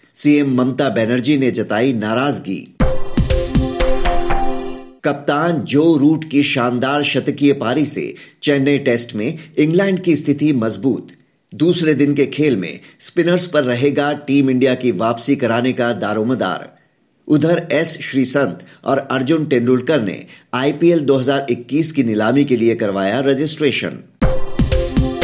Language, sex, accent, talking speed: Hindi, male, native, 120 wpm